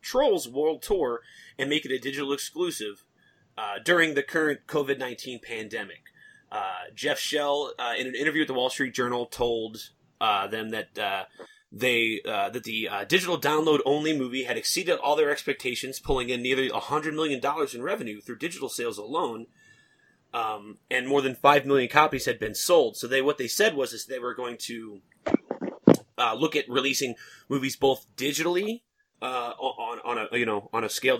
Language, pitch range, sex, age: English, 120-150 Hz, male, 30-49